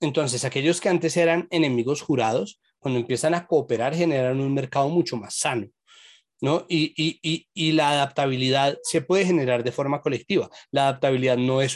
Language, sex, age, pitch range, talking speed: Spanish, male, 30-49, 125-160 Hz, 170 wpm